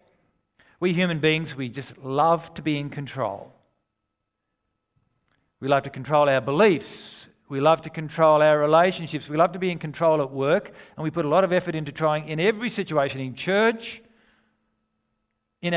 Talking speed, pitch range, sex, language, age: 170 wpm, 140-195 Hz, male, English, 50-69